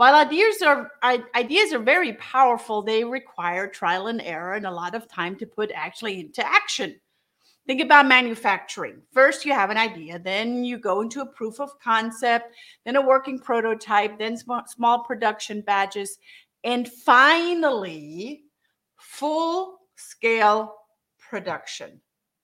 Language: English